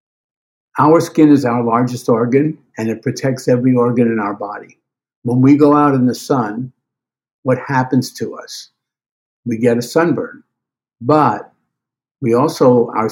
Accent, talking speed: American, 150 wpm